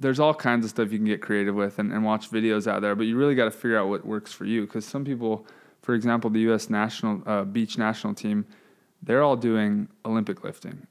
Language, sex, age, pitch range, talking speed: English, male, 20-39, 105-120 Hz, 240 wpm